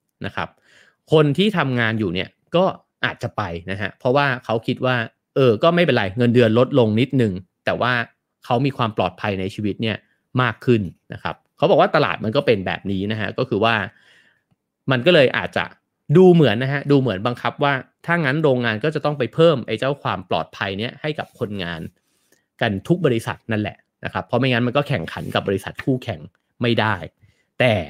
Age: 30-49